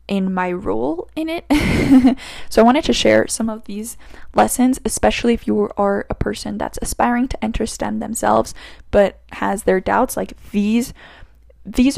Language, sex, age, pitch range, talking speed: English, female, 10-29, 195-235 Hz, 165 wpm